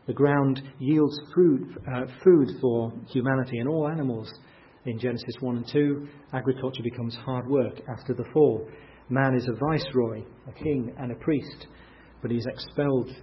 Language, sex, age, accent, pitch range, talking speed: English, male, 40-59, British, 120-140 Hz, 165 wpm